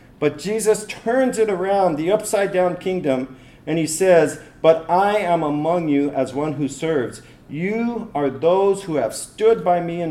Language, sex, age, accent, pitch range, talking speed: English, male, 50-69, American, 130-160 Hz, 170 wpm